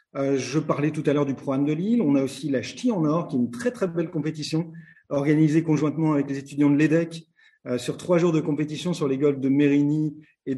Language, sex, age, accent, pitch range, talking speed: French, male, 40-59, French, 135-160 Hz, 245 wpm